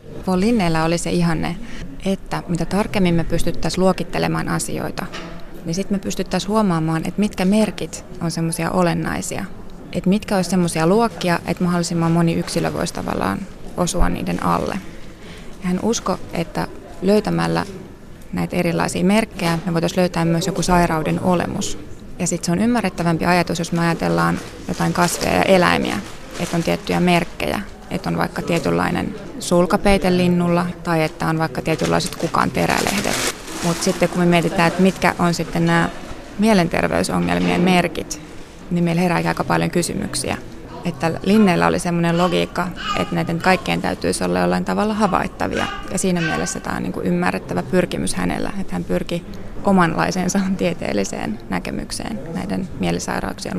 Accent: native